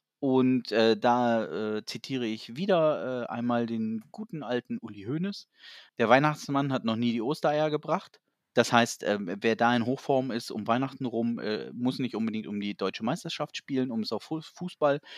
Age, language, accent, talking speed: 30-49, German, German, 180 wpm